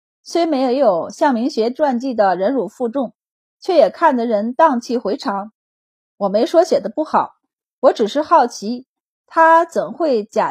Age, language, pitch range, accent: 30-49, Chinese, 220-300 Hz, native